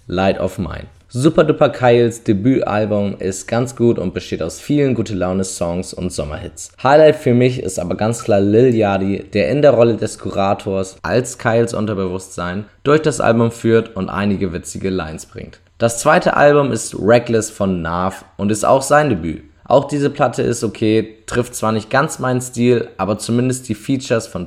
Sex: male